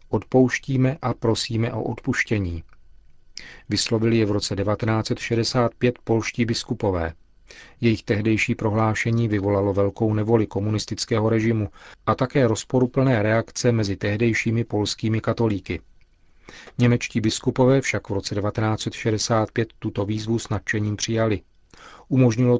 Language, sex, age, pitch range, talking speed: Czech, male, 40-59, 105-120 Hz, 105 wpm